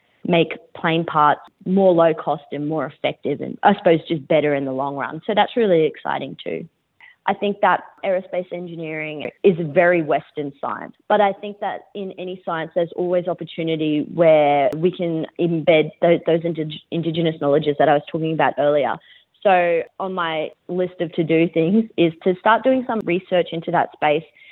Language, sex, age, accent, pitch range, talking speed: English, female, 20-39, Australian, 155-185 Hz, 185 wpm